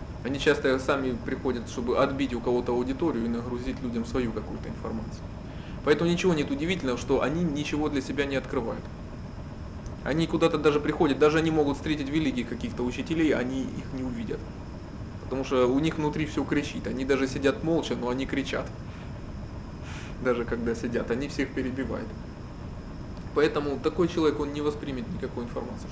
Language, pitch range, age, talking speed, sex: Russian, 125-150 Hz, 20-39, 160 wpm, male